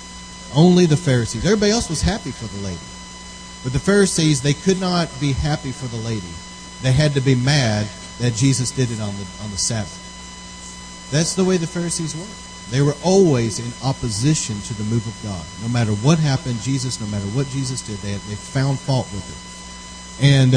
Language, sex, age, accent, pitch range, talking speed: English, male, 40-59, American, 95-140 Hz, 200 wpm